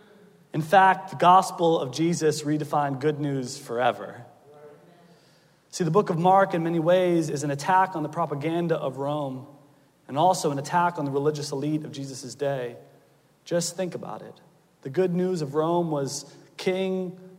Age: 30-49